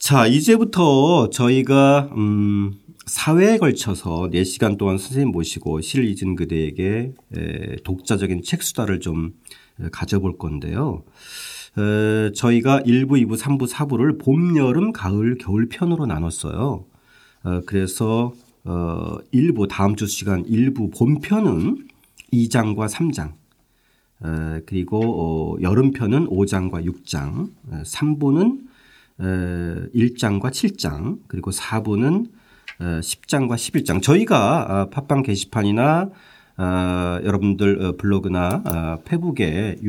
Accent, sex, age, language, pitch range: native, male, 40-59, Korean, 90-135 Hz